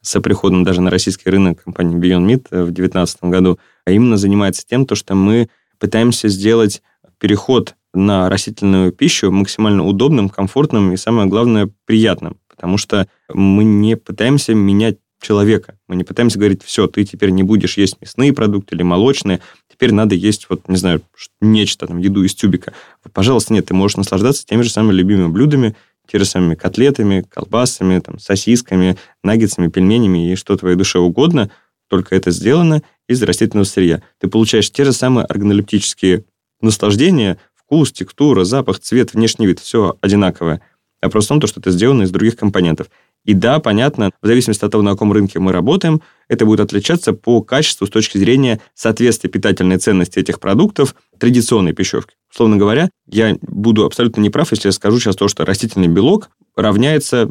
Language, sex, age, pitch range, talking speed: Russian, male, 20-39, 95-115 Hz, 170 wpm